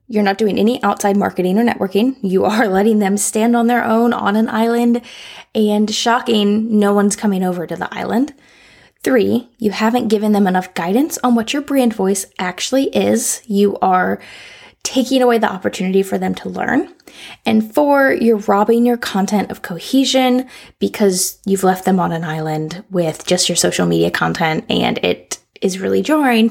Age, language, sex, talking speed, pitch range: 10-29, English, female, 175 wpm, 195-245 Hz